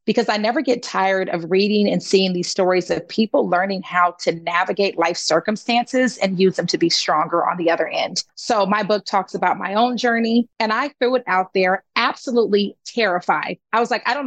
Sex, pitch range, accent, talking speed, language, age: female, 185-225 Hz, American, 210 wpm, English, 30-49